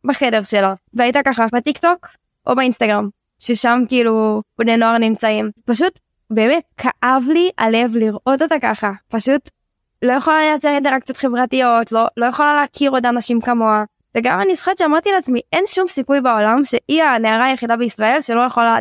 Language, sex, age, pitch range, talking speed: Hebrew, female, 10-29, 225-275 Hz, 155 wpm